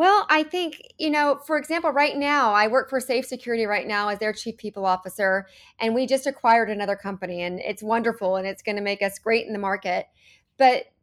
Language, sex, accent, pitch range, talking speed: English, female, American, 190-245 Hz, 225 wpm